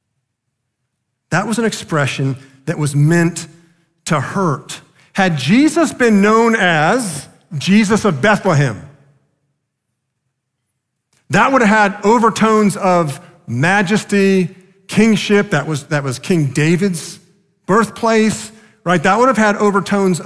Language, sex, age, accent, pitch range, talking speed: English, male, 40-59, American, 125-165 Hz, 115 wpm